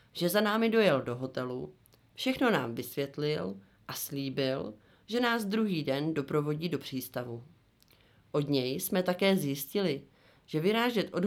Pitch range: 130-185 Hz